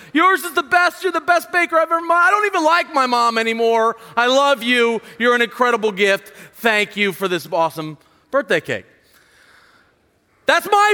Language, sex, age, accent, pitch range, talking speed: English, male, 30-49, American, 195-275 Hz, 185 wpm